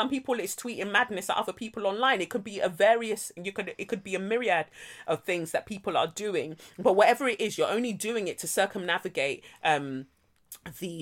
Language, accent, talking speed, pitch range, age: English, British, 215 wpm, 160-215 Hz, 30-49